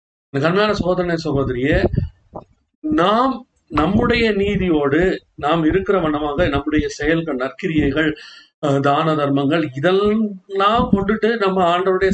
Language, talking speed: Tamil, 90 wpm